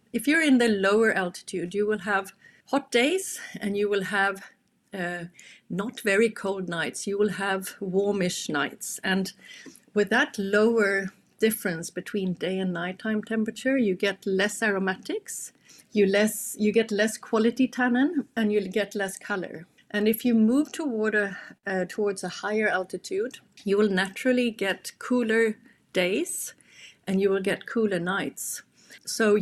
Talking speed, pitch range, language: 155 wpm, 190-230 Hz, English